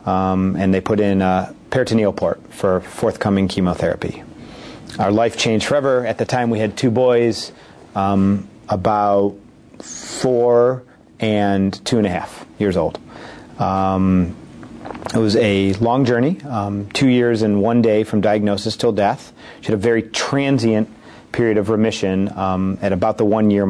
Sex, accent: male, American